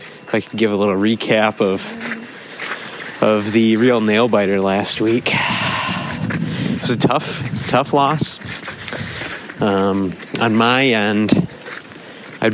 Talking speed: 125 wpm